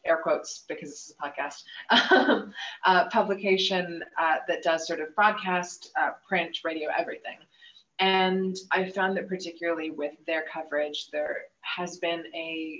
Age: 20-39